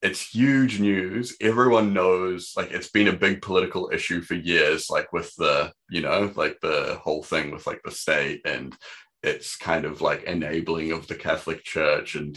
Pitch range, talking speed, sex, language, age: 90-120 Hz, 185 wpm, male, English, 20-39